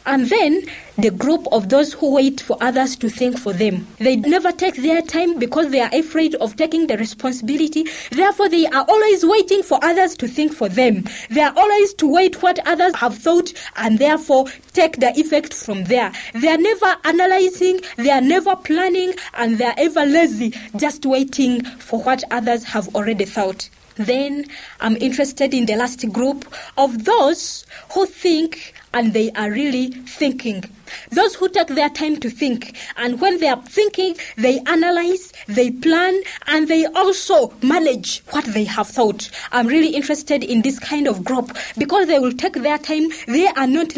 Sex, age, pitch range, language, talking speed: female, 20-39, 240-325 Hz, English, 180 wpm